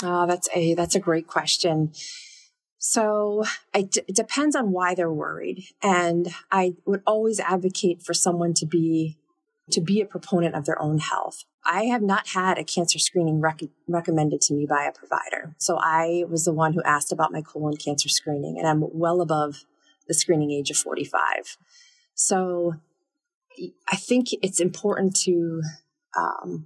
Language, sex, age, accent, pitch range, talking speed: English, female, 30-49, American, 155-195 Hz, 165 wpm